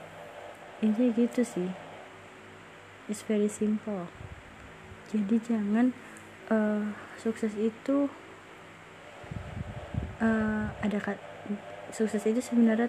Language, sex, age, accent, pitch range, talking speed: Indonesian, female, 20-39, native, 185-225 Hz, 80 wpm